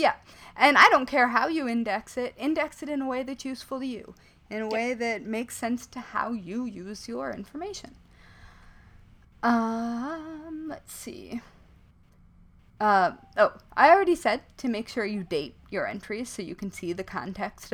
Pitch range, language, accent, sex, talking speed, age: 195-260 Hz, English, American, female, 175 wpm, 30-49